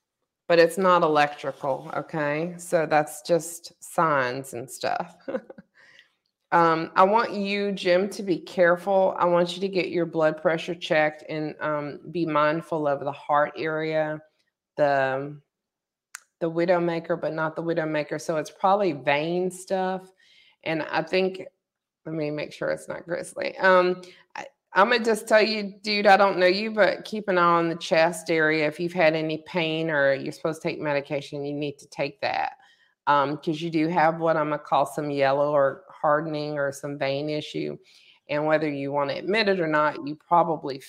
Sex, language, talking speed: female, English, 185 wpm